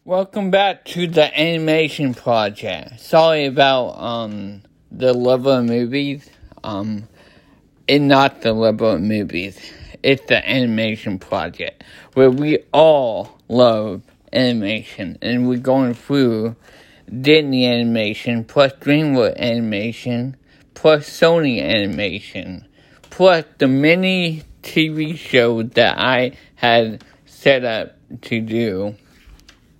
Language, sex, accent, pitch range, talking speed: English, male, American, 115-150 Hz, 105 wpm